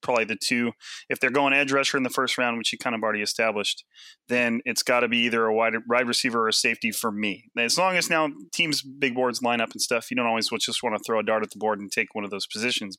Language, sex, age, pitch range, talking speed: English, male, 30-49, 115-140 Hz, 280 wpm